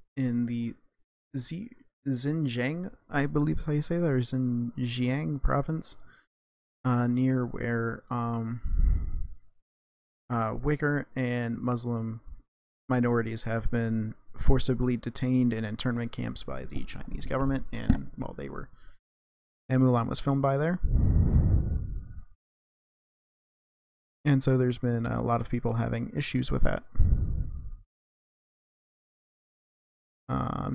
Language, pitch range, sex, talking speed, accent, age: English, 90-130 Hz, male, 110 wpm, American, 30-49